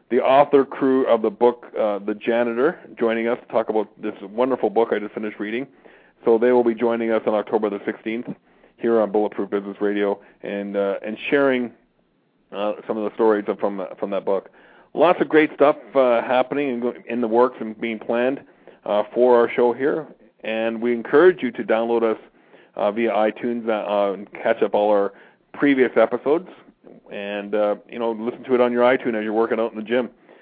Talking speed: 205 wpm